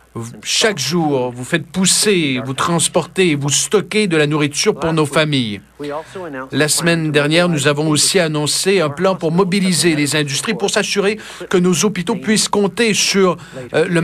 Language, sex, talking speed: French, male, 160 wpm